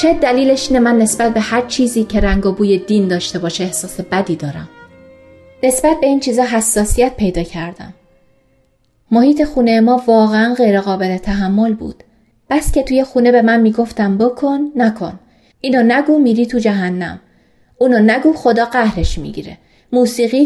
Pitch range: 210-275 Hz